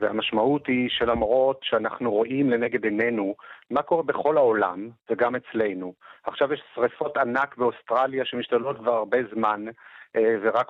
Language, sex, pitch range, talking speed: Hebrew, male, 115-150 Hz, 130 wpm